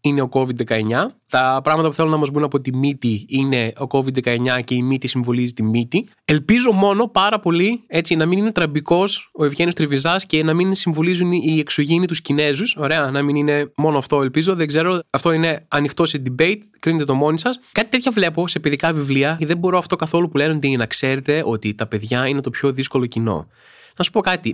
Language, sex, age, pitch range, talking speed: Greek, male, 20-39, 140-225 Hz, 210 wpm